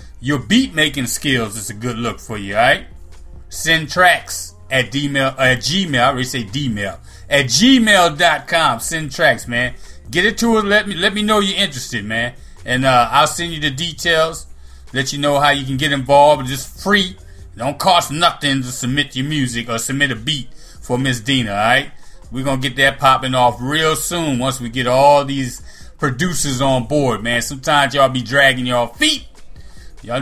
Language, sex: English, male